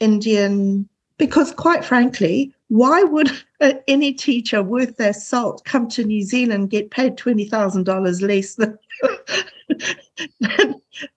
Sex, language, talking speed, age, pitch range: female, English, 120 wpm, 50-69, 195-270 Hz